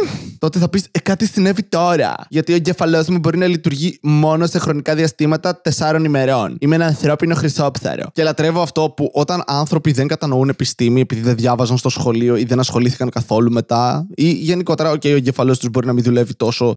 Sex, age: male, 20-39